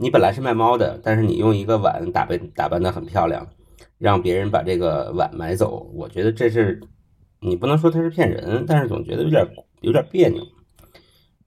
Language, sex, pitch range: Chinese, male, 100-135 Hz